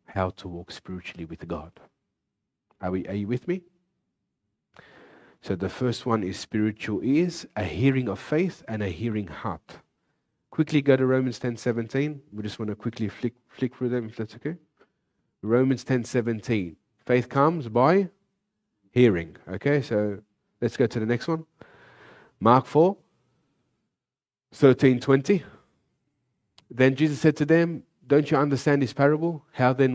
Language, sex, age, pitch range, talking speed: English, male, 30-49, 110-150 Hz, 150 wpm